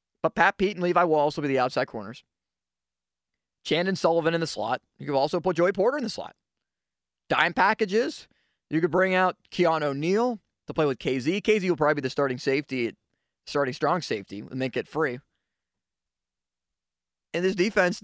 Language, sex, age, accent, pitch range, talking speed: English, male, 20-39, American, 130-195 Hz, 185 wpm